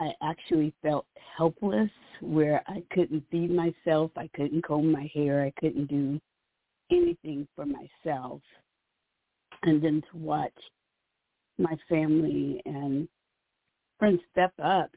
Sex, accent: female, American